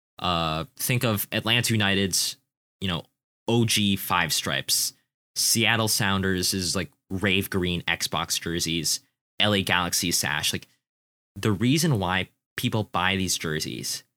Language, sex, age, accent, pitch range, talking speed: English, male, 20-39, American, 95-130 Hz, 125 wpm